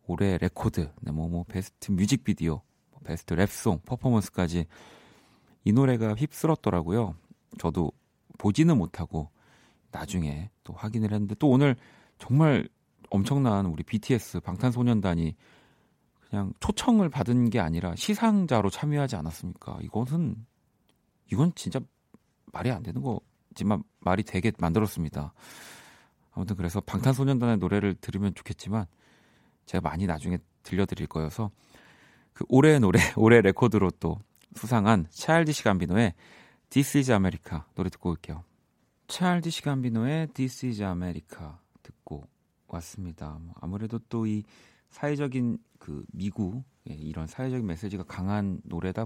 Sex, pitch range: male, 85-125 Hz